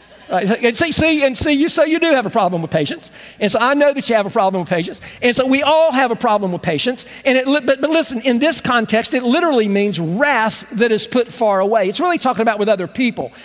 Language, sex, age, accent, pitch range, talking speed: English, male, 50-69, American, 210-265 Hz, 265 wpm